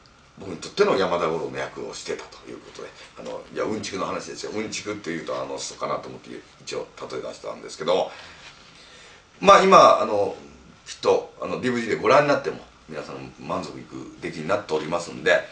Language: Japanese